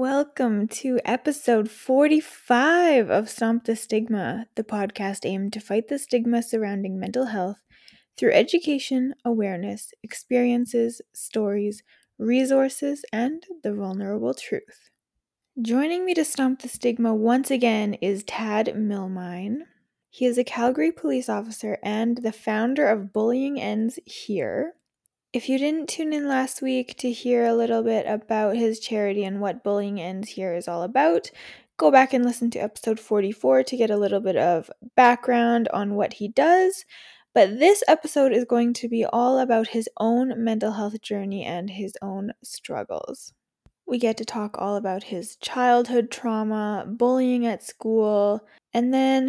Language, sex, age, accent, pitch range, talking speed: English, female, 10-29, American, 210-255 Hz, 150 wpm